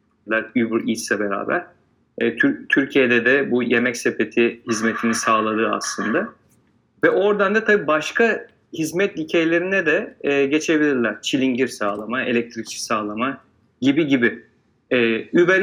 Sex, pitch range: male, 120-180 Hz